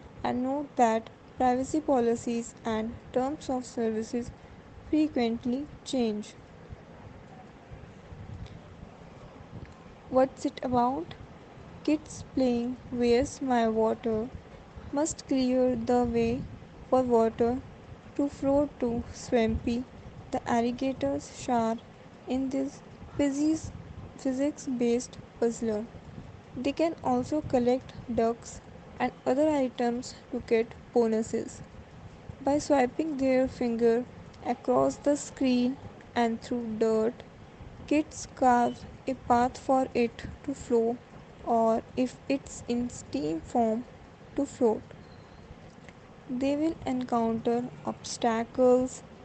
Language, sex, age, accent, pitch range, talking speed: English, female, 10-29, Indian, 235-270 Hz, 95 wpm